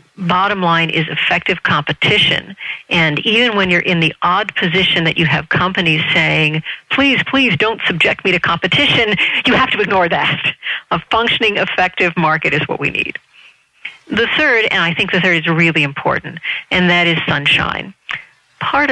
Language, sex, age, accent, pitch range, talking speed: English, female, 50-69, American, 155-190 Hz, 170 wpm